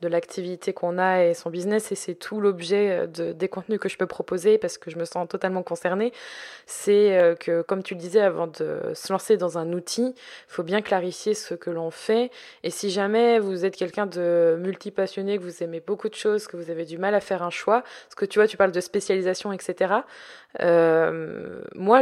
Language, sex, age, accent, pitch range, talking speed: French, female, 20-39, French, 175-220 Hz, 220 wpm